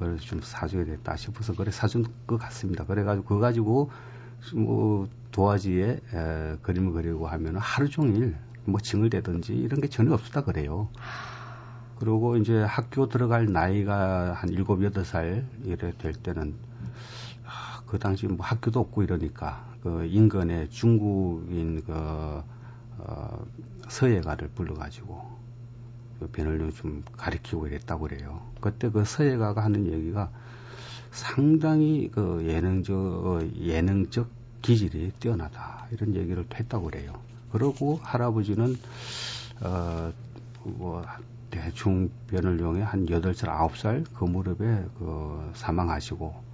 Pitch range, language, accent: 90-120 Hz, Korean, native